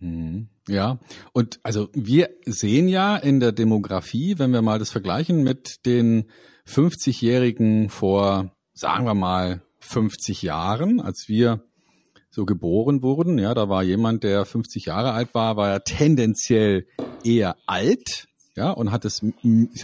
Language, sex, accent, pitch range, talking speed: German, male, German, 105-130 Hz, 140 wpm